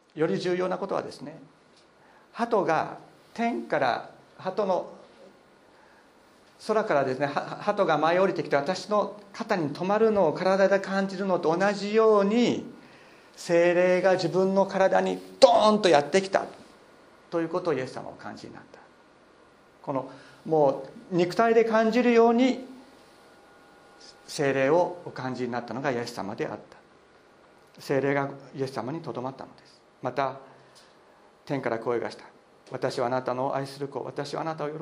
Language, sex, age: Japanese, male, 50-69